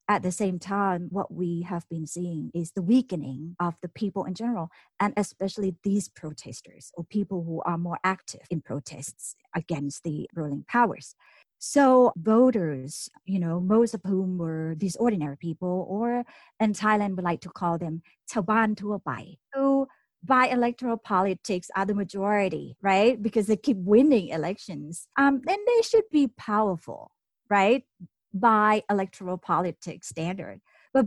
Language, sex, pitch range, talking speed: English, female, 175-220 Hz, 150 wpm